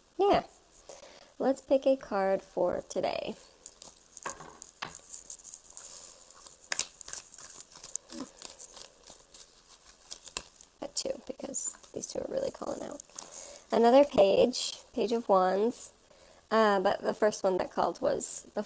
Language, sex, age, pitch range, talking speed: English, male, 20-39, 205-285 Hz, 95 wpm